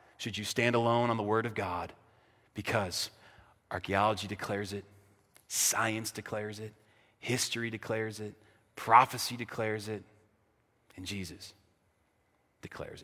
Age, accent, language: 40-59, American, English